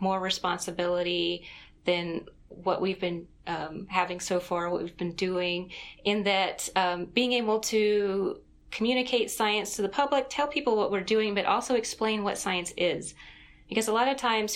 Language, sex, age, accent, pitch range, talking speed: English, female, 30-49, American, 185-215 Hz, 170 wpm